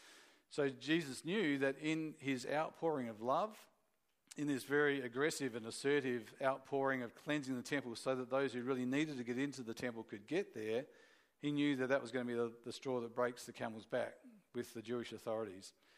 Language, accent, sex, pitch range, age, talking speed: English, Australian, male, 120-145 Hz, 40-59, 200 wpm